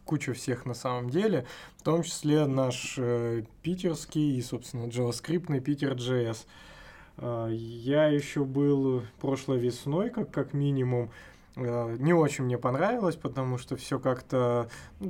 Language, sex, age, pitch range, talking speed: Russian, male, 20-39, 125-150 Hz, 125 wpm